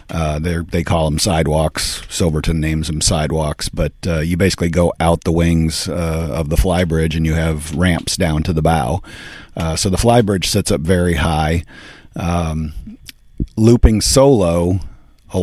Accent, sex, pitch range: American, male, 80-95 Hz